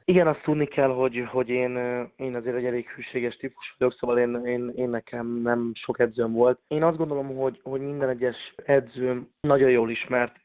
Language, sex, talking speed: Hungarian, male, 195 wpm